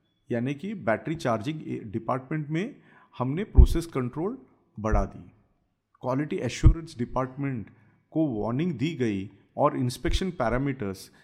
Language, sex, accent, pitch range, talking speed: English, male, Indian, 110-170 Hz, 110 wpm